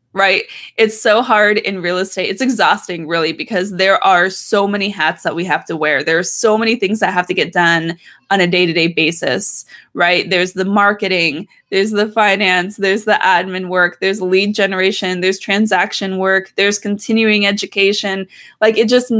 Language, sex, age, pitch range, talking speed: English, female, 20-39, 185-210 Hz, 180 wpm